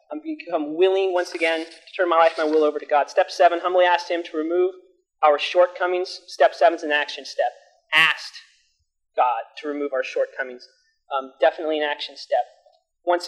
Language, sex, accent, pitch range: English, male, American, 160-215 Hz